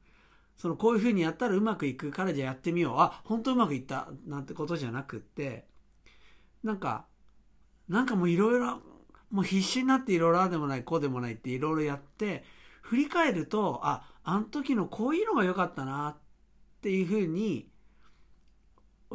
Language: Japanese